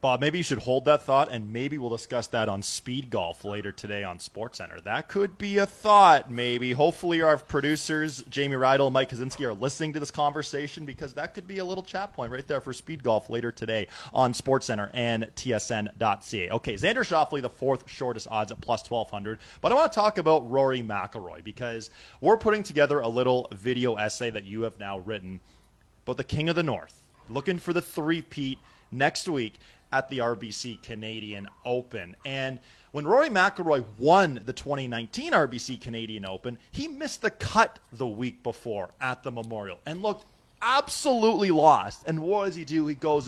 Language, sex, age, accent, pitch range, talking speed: English, male, 20-39, American, 115-155 Hz, 190 wpm